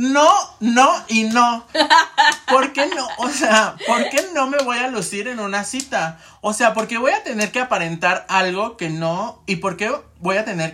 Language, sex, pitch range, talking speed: Spanish, male, 170-230 Hz, 205 wpm